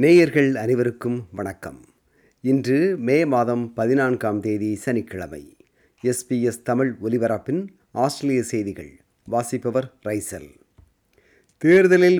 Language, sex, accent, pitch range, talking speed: Tamil, male, native, 110-140 Hz, 85 wpm